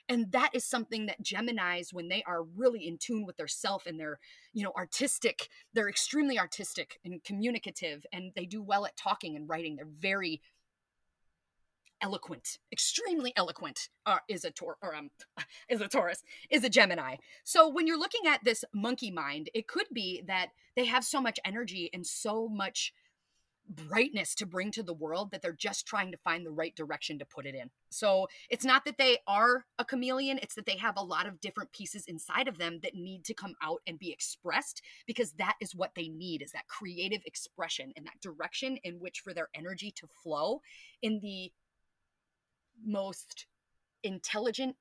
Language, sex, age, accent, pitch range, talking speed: English, female, 30-49, American, 175-240 Hz, 185 wpm